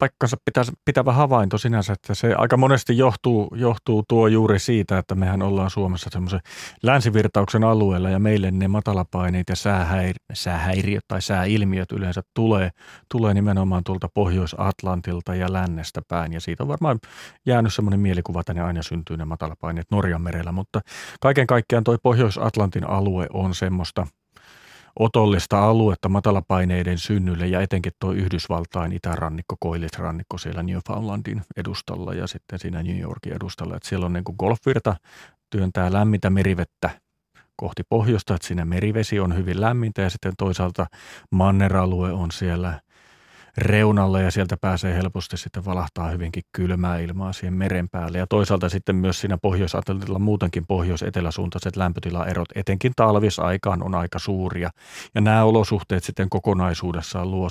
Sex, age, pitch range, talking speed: male, 40-59, 90-105 Hz, 140 wpm